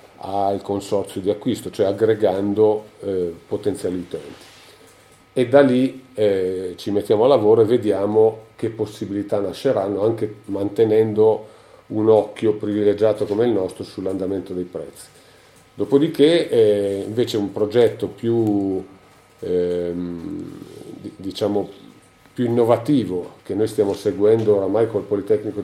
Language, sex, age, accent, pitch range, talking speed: Italian, male, 40-59, native, 100-120 Hz, 115 wpm